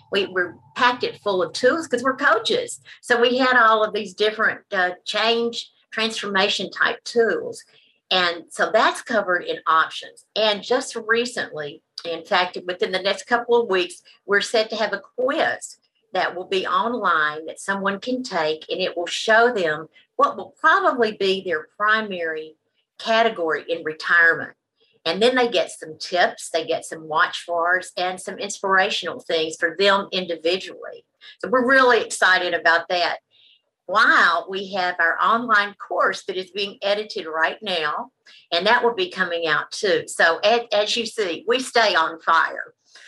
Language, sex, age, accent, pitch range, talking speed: English, female, 50-69, American, 165-225 Hz, 165 wpm